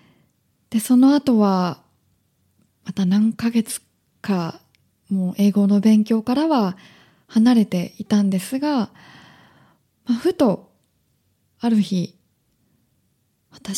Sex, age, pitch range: female, 20-39, 195-255 Hz